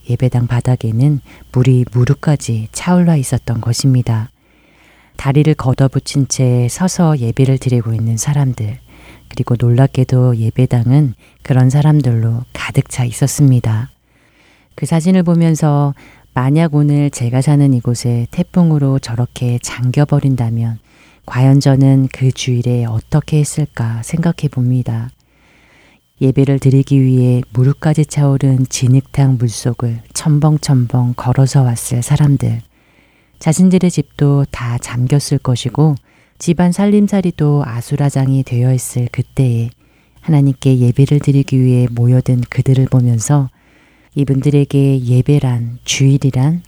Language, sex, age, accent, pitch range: Korean, female, 40-59, native, 125-145 Hz